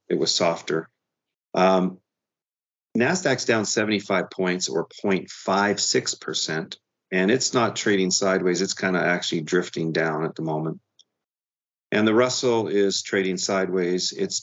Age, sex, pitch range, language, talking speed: 40-59, male, 85-95 Hz, English, 130 wpm